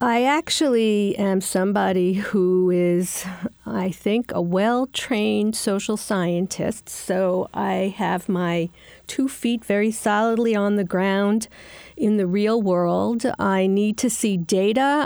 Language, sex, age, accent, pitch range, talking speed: English, female, 50-69, American, 190-230 Hz, 130 wpm